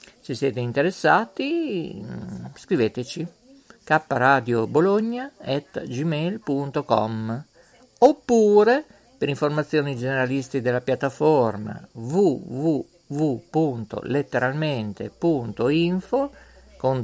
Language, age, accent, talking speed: Italian, 50-69, native, 50 wpm